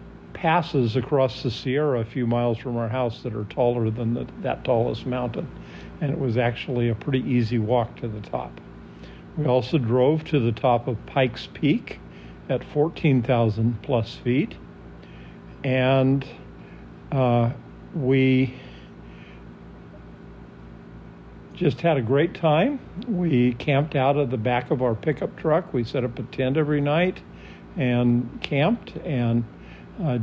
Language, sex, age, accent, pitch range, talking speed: English, male, 50-69, American, 115-140 Hz, 135 wpm